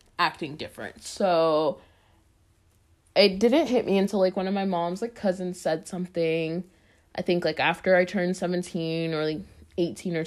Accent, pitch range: American, 155-225 Hz